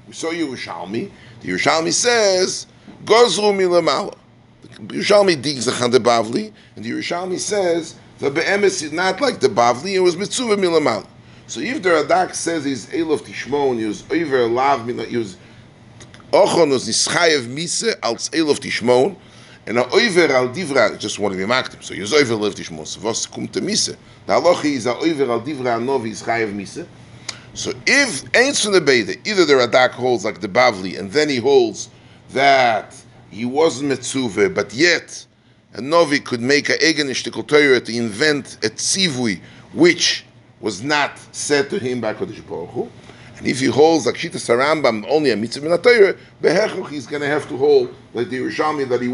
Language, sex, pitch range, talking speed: English, male, 120-190 Hz, 165 wpm